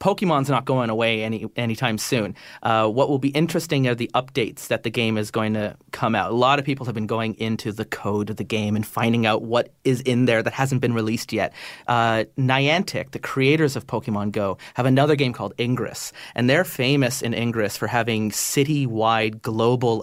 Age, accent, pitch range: 30-49, American, 115-145 Hz